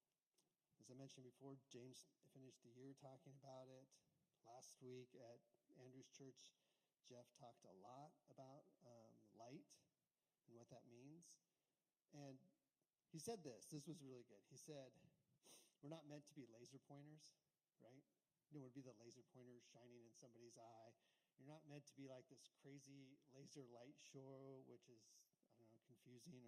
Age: 40-59